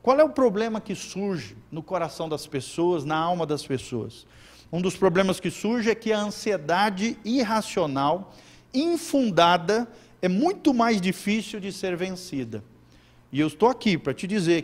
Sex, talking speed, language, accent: male, 160 wpm, Portuguese, Brazilian